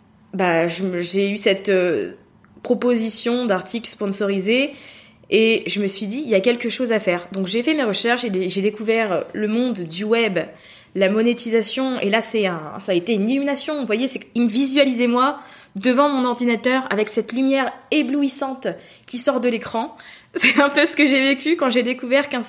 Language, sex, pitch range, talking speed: French, female, 195-245 Hz, 195 wpm